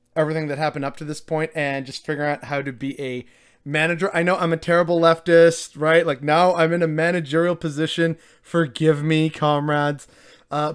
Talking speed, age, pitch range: 190 wpm, 30-49, 145-175 Hz